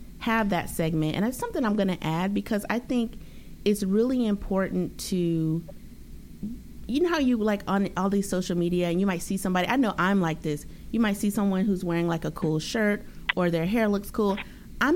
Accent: American